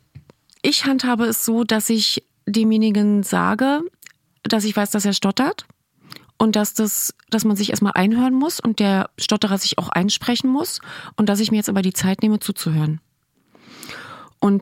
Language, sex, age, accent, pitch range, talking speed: German, female, 30-49, German, 195-220 Hz, 170 wpm